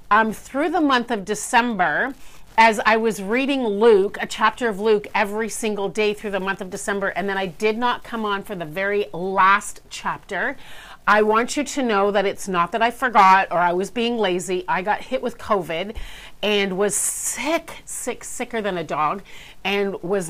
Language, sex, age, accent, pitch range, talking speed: English, female, 40-59, American, 200-250 Hz, 195 wpm